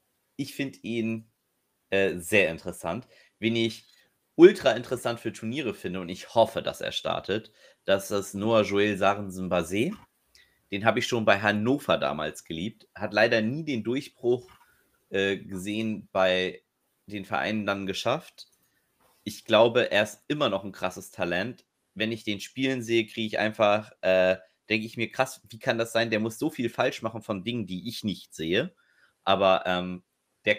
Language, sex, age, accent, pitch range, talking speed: German, male, 30-49, German, 100-120 Hz, 170 wpm